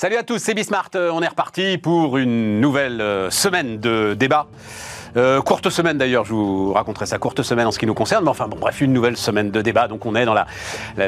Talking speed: 240 wpm